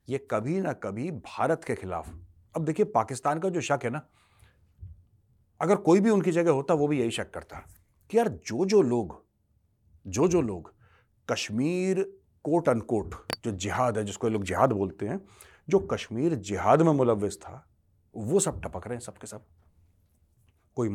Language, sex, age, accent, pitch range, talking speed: Hindi, male, 40-59, native, 95-140 Hz, 170 wpm